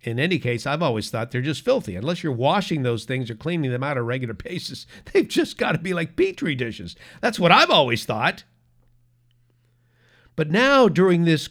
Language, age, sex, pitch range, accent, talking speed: English, 50-69, male, 120-180 Hz, American, 200 wpm